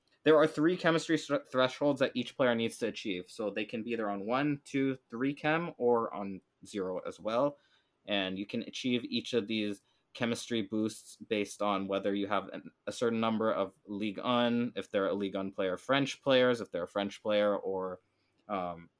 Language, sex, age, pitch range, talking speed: English, male, 20-39, 100-125 Hz, 200 wpm